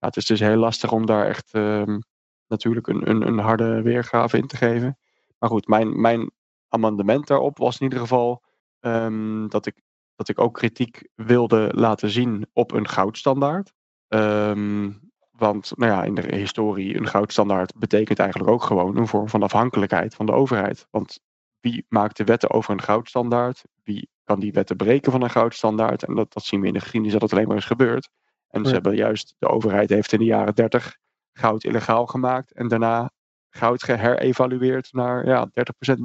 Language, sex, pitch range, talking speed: Dutch, male, 105-120 Hz, 180 wpm